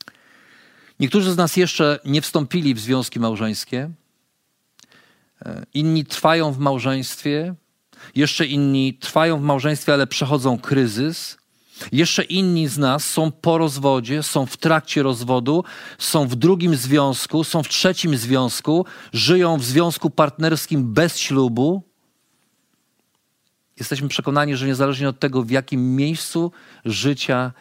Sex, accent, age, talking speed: male, native, 40-59, 120 wpm